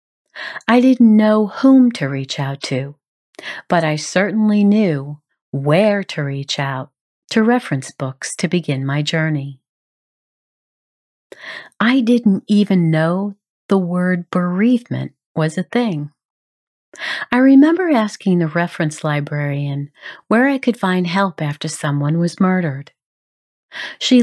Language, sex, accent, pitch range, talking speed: English, female, American, 150-210 Hz, 120 wpm